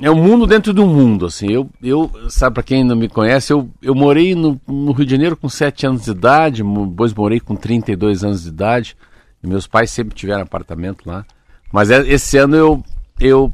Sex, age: male, 50-69